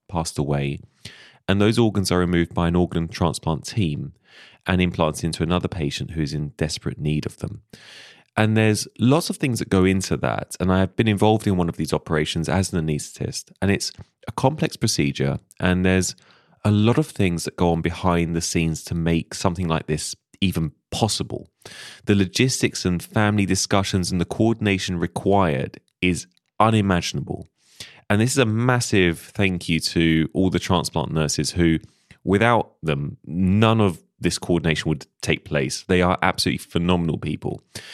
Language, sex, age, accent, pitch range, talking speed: English, male, 30-49, British, 85-105 Hz, 170 wpm